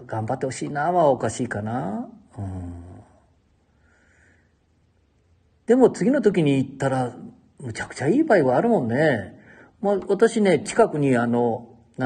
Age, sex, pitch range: 50-69, male, 100-130 Hz